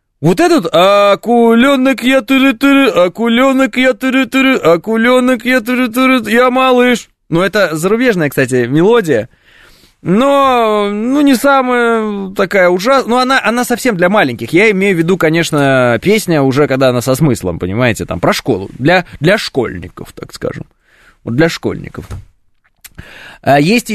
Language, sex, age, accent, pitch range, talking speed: Russian, male, 20-39, native, 145-240 Hz, 135 wpm